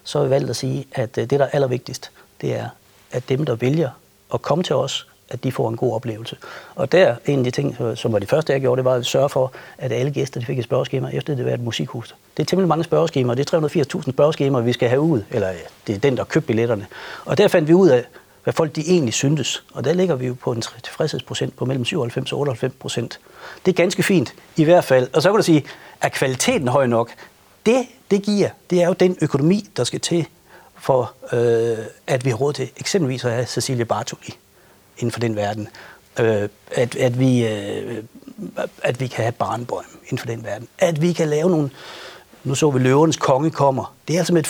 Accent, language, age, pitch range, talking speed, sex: native, Danish, 60-79, 125-180 Hz, 235 wpm, male